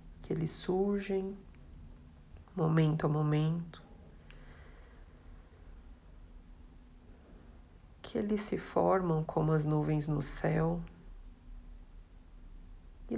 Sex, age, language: female, 40-59, Portuguese